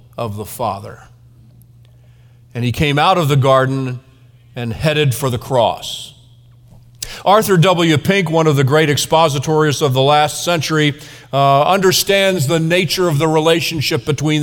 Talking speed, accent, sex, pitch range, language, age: 145 wpm, American, male, 125-170 Hz, English, 40-59